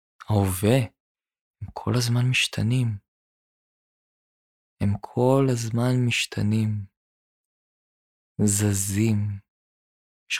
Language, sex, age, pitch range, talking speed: Hebrew, male, 20-39, 105-125 Hz, 65 wpm